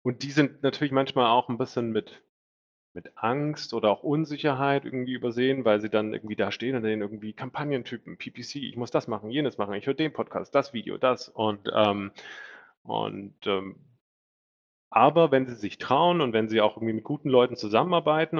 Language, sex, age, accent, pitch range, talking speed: German, male, 30-49, German, 105-130 Hz, 190 wpm